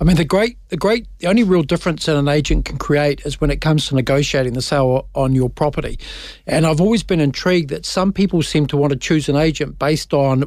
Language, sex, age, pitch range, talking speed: English, male, 50-69, 135-160 Hz, 245 wpm